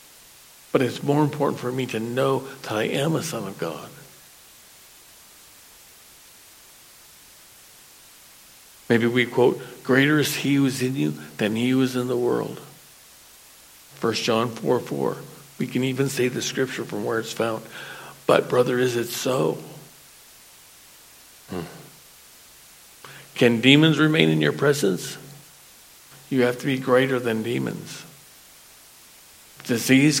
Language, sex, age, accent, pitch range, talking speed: English, male, 60-79, American, 125-160 Hz, 130 wpm